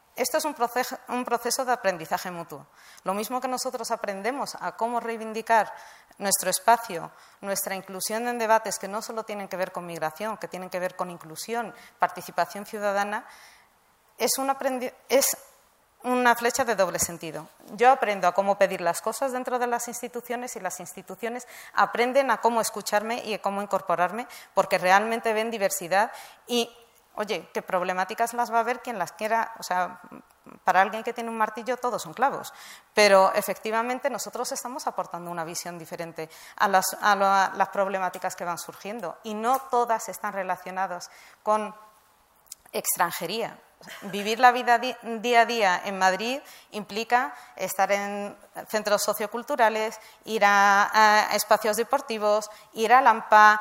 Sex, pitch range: female, 195-235 Hz